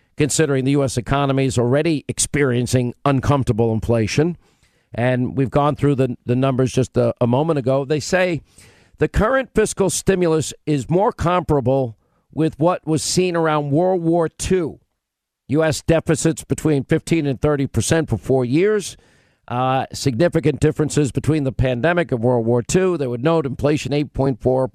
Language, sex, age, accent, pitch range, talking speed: English, male, 50-69, American, 125-160 Hz, 155 wpm